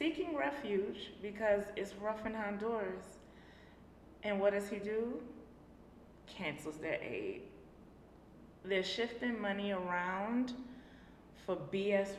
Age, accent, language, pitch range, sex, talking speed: 20-39, American, English, 180-230 Hz, female, 105 wpm